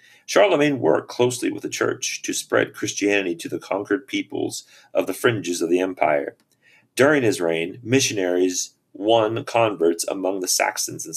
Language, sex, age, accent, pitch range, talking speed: English, male, 40-59, American, 105-155 Hz, 155 wpm